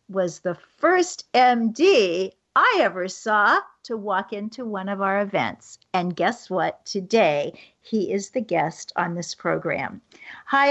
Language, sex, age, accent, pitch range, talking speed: English, female, 50-69, American, 190-240 Hz, 145 wpm